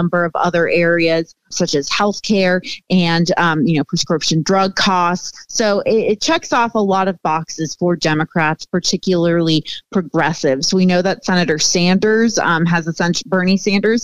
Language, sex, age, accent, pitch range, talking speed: English, female, 30-49, American, 165-200 Hz, 160 wpm